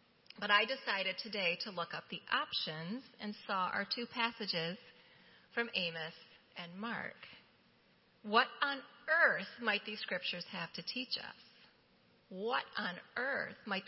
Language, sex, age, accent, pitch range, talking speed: English, female, 30-49, American, 185-240 Hz, 140 wpm